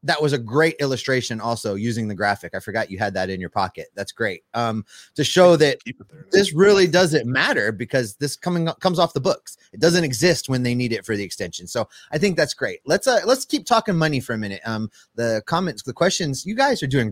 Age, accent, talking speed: 30-49, American, 240 wpm